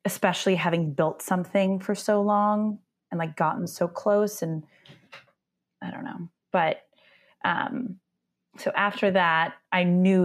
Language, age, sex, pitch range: English, 20-39, female, 165-200 Hz